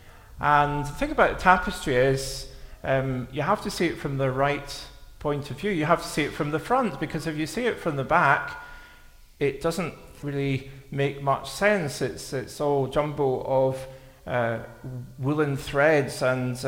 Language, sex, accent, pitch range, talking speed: English, male, British, 125-155 Hz, 180 wpm